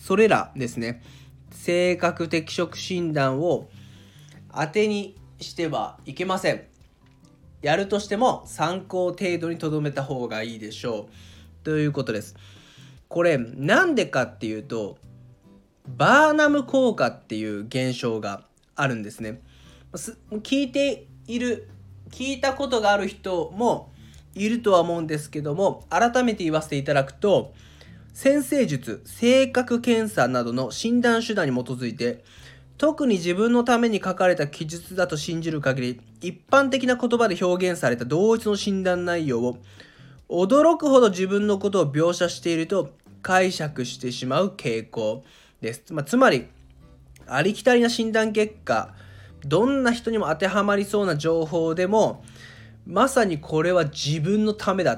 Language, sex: Japanese, male